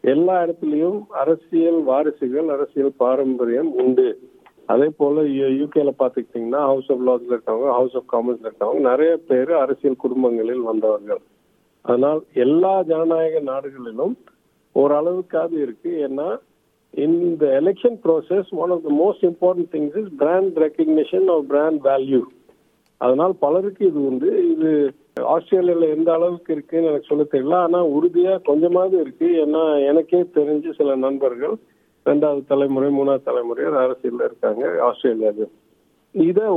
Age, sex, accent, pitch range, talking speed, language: 50-69, male, native, 140-185 Hz, 120 wpm, Tamil